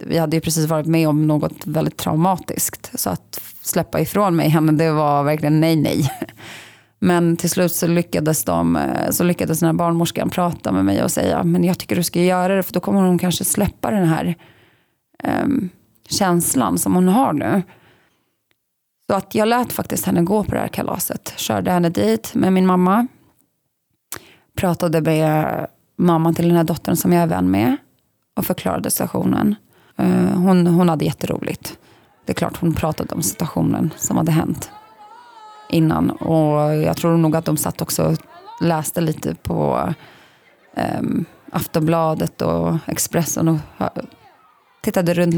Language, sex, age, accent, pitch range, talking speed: Swedish, female, 30-49, native, 155-180 Hz, 165 wpm